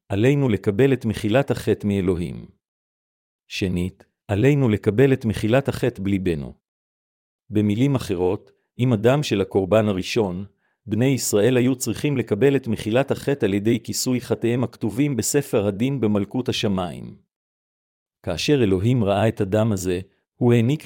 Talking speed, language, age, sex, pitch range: 130 wpm, Hebrew, 50-69, male, 100-125 Hz